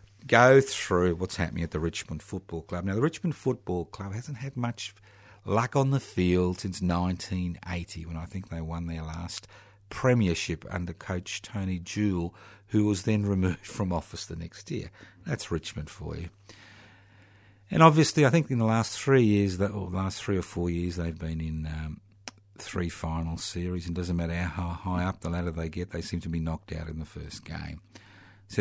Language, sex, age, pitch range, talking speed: English, male, 50-69, 85-105 Hz, 195 wpm